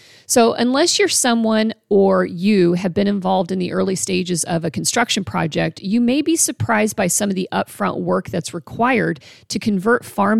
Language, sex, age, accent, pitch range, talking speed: English, female, 40-59, American, 170-215 Hz, 185 wpm